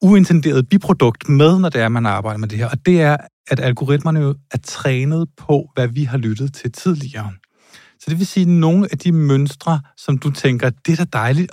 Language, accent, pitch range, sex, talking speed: Danish, native, 115-155 Hz, male, 220 wpm